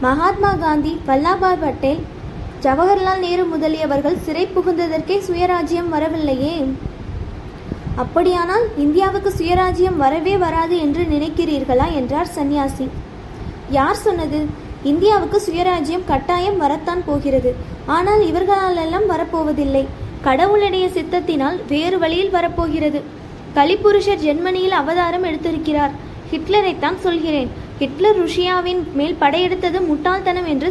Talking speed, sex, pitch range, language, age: 95 wpm, female, 305-370 Hz, English, 20-39